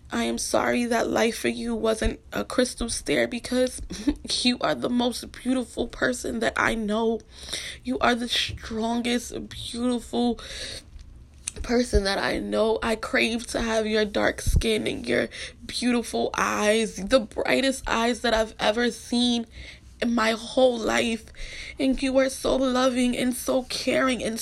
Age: 20-39